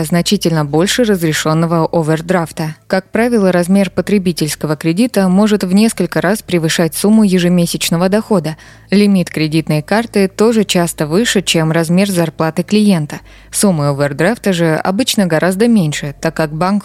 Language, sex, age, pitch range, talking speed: Russian, female, 20-39, 160-200 Hz, 130 wpm